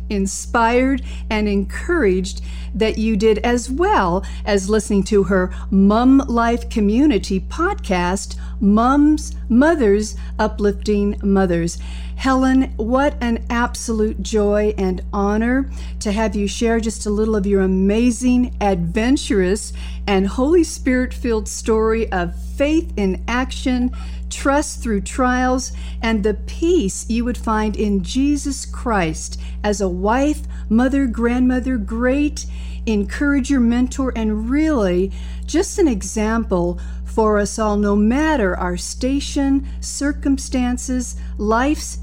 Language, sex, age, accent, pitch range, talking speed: English, female, 50-69, American, 190-255 Hz, 115 wpm